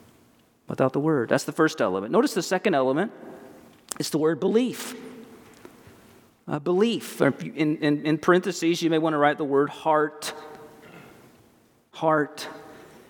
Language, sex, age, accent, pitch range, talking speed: English, male, 40-59, American, 140-185 Hz, 135 wpm